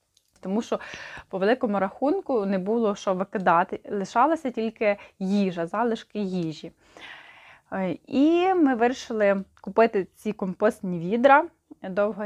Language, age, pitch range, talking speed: Ukrainian, 20-39, 190-235 Hz, 110 wpm